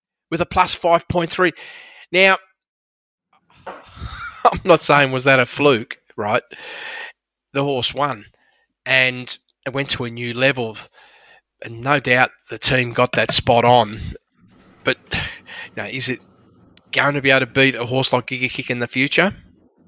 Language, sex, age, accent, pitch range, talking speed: English, male, 20-39, Australian, 120-145 Hz, 155 wpm